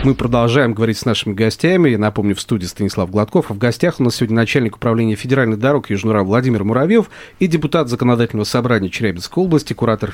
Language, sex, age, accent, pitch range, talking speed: Russian, male, 40-59, native, 110-140 Hz, 190 wpm